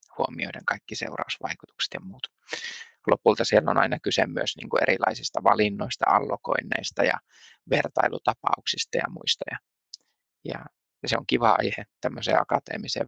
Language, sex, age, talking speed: Finnish, male, 20-39, 110 wpm